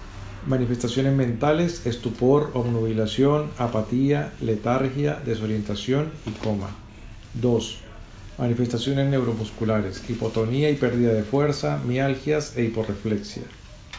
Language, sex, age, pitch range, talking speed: English, male, 50-69, 110-130 Hz, 85 wpm